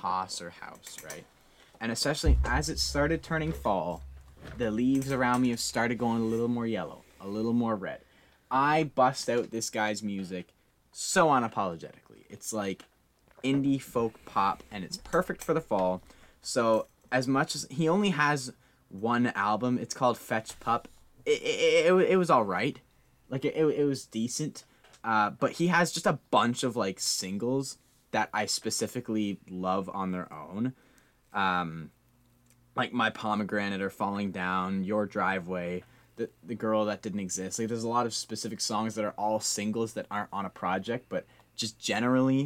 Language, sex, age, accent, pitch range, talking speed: English, male, 10-29, American, 100-125 Hz, 175 wpm